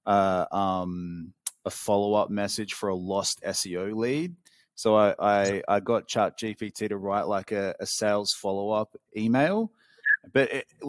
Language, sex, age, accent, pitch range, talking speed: English, male, 30-49, Australian, 105-125 Hz, 150 wpm